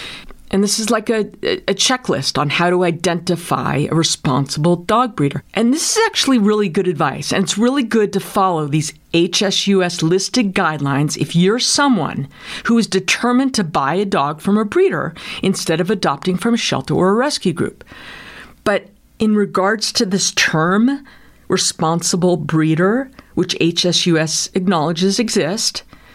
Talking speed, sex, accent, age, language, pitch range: 155 wpm, female, American, 50-69, English, 170-225 Hz